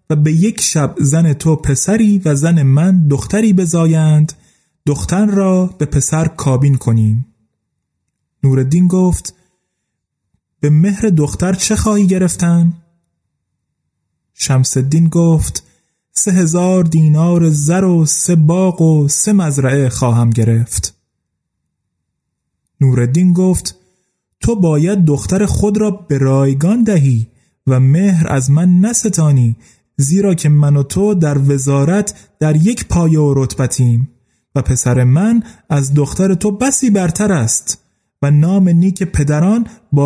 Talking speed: 120 wpm